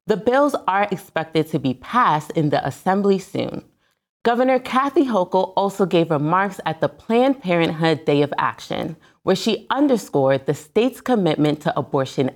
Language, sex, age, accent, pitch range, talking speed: English, female, 30-49, American, 145-220 Hz, 155 wpm